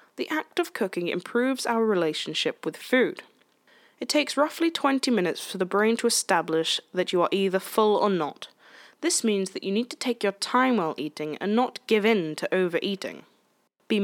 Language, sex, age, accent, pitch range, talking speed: English, female, 10-29, British, 185-255 Hz, 190 wpm